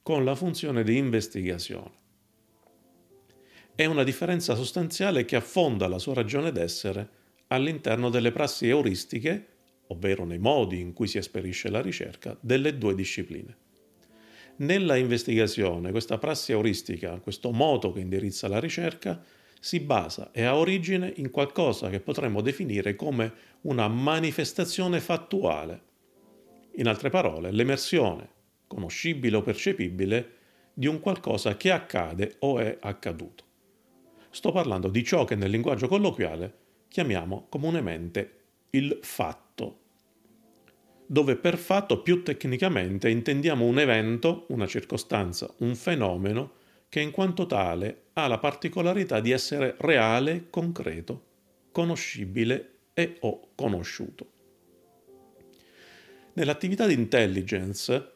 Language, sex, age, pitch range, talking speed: Italian, male, 40-59, 100-155 Hz, 115 wpm